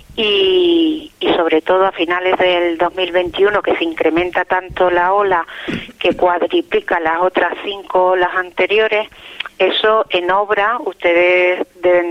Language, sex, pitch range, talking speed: Spanish, female, 175-220 Hz, 130 wpm